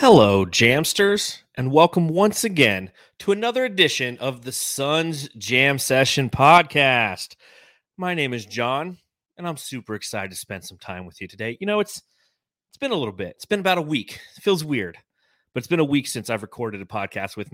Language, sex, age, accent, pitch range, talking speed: English, male, 30-49, American, 110-150 Hz, 195 wpm